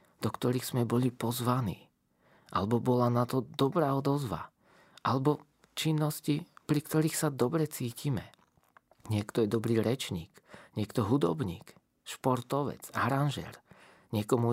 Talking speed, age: 110 wpm, 40-59